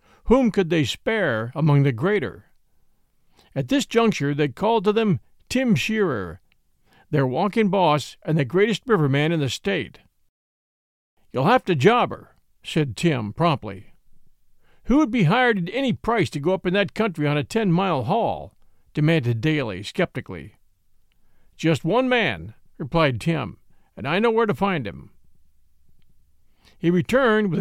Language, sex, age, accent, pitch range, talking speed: English, male, 50-69, American, 140-205 Hz, 150 wpm